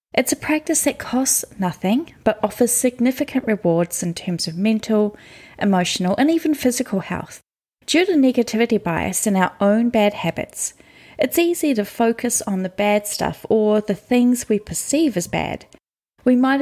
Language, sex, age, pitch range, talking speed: English, female, 10-29, 195-255 Hz, 165 wpm